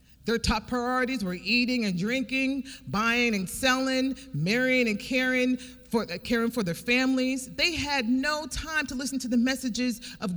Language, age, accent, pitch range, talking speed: English, 40-59, American, 150-250 Hz, 155 wpm